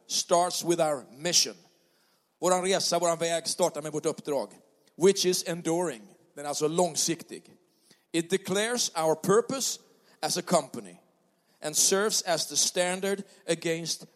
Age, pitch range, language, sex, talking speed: 40-59, 165-215 Hz, Swedish, male, 135 wpm